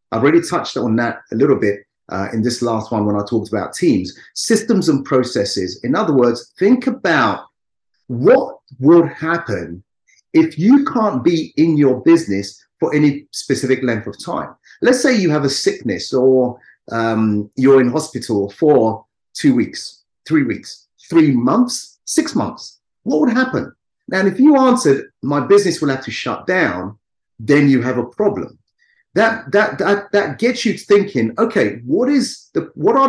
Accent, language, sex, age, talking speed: British, English, male, 30-49, 170 wpm